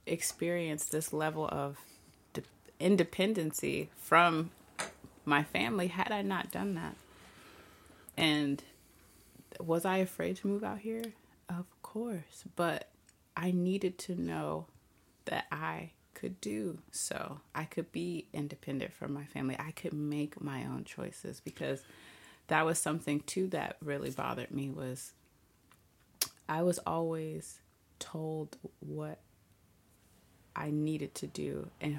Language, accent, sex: English, American, female